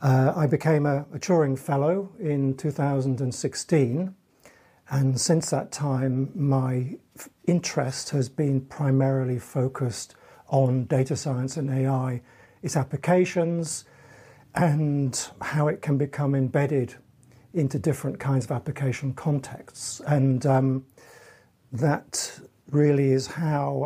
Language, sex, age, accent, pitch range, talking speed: English, male, 50-69, British, 135-150 Hz, 115 wpm